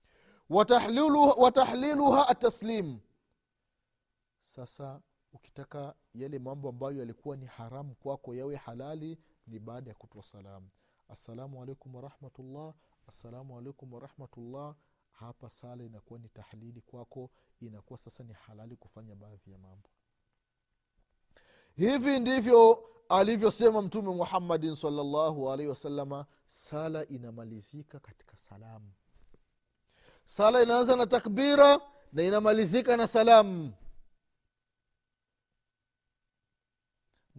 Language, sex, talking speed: Swahili, male, 100 wpm